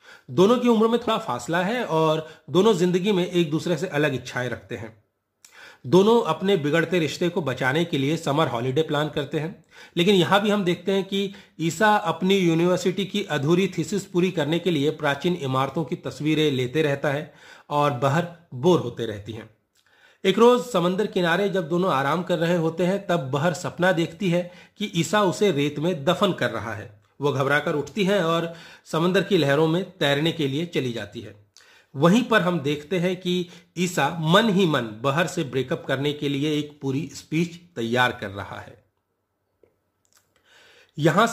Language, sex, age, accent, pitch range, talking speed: Hindi, male, 40-59, native, 140-185 Hz, 180 wpm